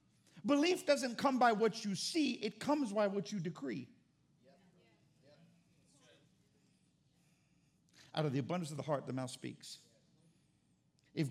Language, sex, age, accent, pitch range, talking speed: English, male, 50-69, American, 160-240 Hz, 125 wpm